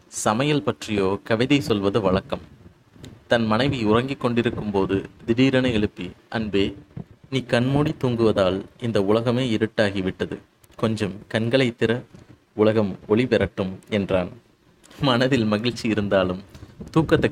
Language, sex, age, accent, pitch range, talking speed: Tamil, male, 30-49, native, 105-125 Hz, 105 wpm